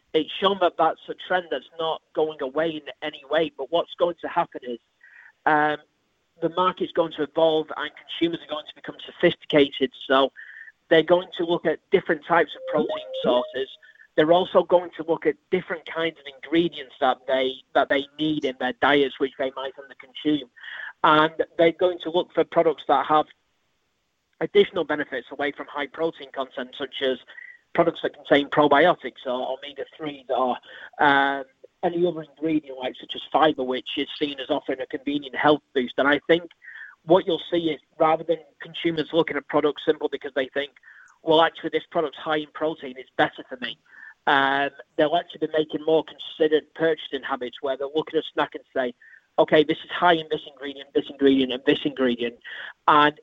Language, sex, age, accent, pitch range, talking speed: English, male, 30-49, British, 140-165 Hz, 185 wpm